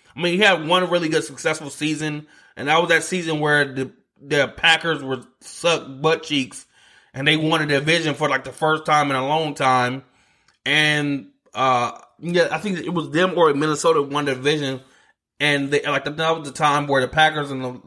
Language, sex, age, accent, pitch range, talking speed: English, male, 20-39, American, 135-155 Hz, 205 wpm